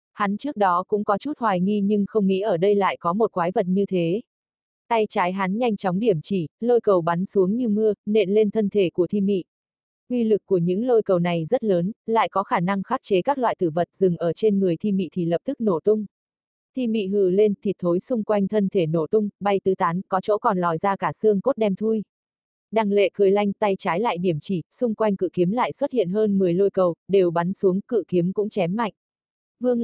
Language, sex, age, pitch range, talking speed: Vietnamese, female, 20-39, 180-220 Hz, 250 wpm